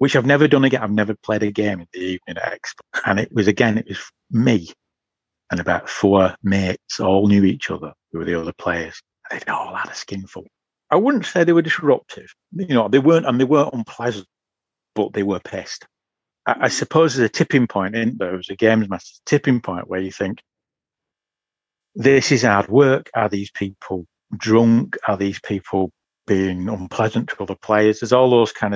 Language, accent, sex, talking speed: English, British, male, 200 wpm